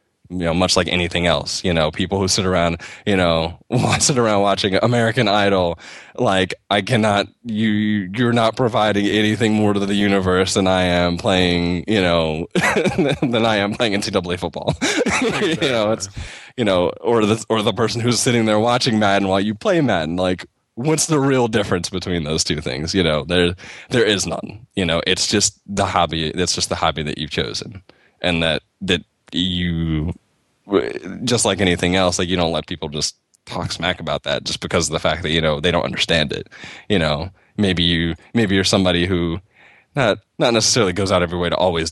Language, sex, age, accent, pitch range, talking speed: English, male, 20-39, American, 85-105 Hz, 195 wpm